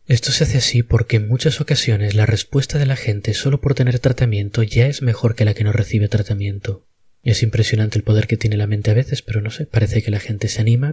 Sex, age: male, 20-39